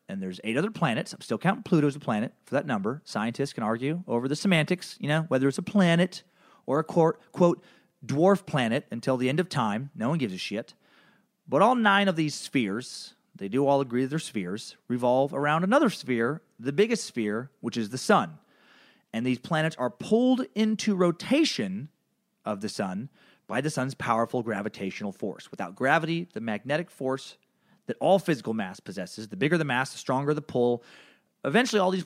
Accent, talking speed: American, 195 wpm